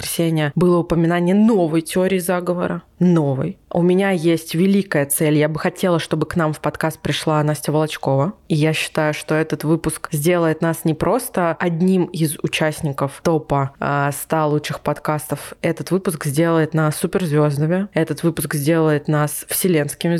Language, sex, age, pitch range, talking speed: Russian, female, 20-39, 150-170 Hz, 145 wpm